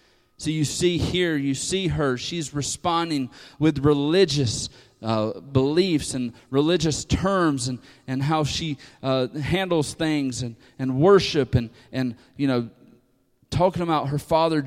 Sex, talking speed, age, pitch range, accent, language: male, 140 wpm, 30-49, 120-170 Hz, American, English